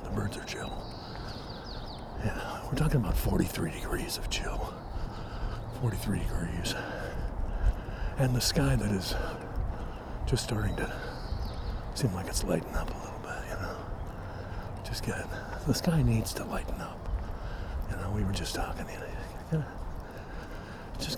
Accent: American